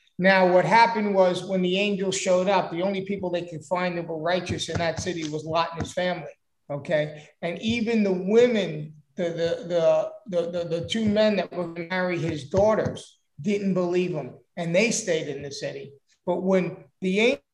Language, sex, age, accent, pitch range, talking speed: English, male, 50-69, American, 170-205 Hz, 200 wpm